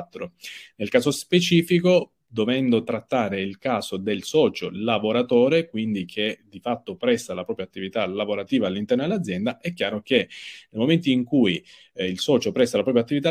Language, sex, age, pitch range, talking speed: Italian, male, 30-49, 105-175 Hz, 160 wpm